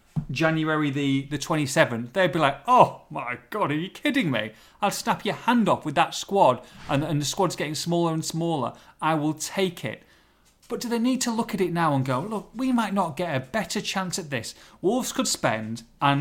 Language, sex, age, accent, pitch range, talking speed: English, male, 30-49, British, 135-195 Hz, 220 wpm